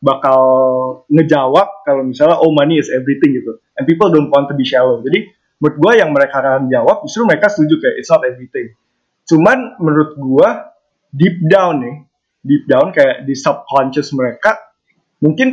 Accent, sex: Indonesian, male